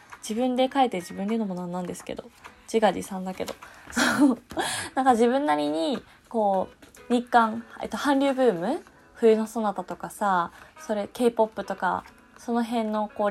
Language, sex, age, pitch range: Japanese, female, 20-39, 195-255 Hz